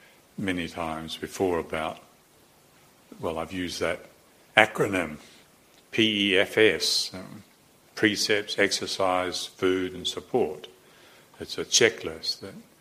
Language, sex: English, male